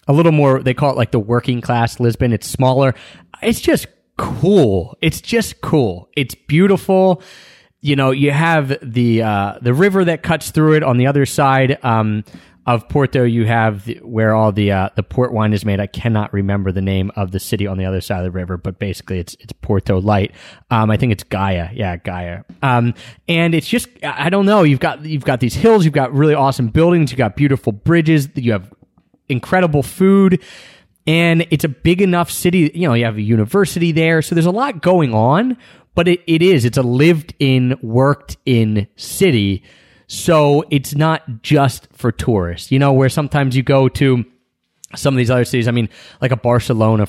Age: 30-49